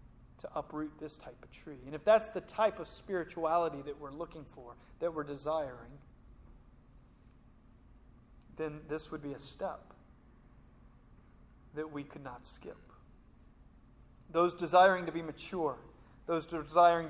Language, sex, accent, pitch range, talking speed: English, male, American, 135-165 Hz, 135 wpm